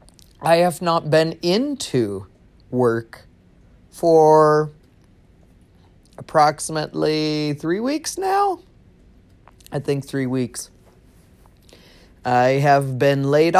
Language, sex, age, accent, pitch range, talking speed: English, male, 30-49, American, 105-145 Hz, 85 wpm